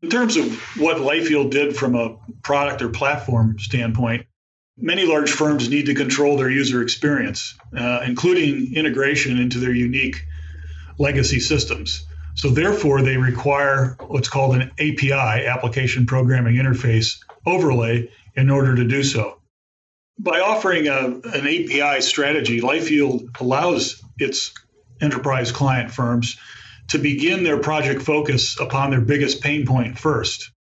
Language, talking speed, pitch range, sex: English, 135 wpm, 120-145 Hz, male